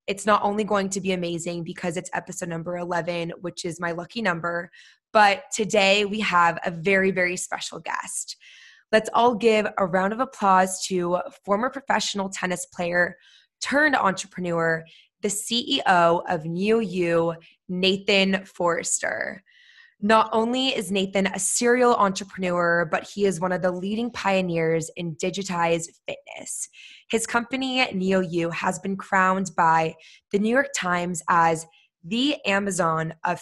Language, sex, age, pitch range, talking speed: English, female, 20-39, 175-215 Hz, 145 wpm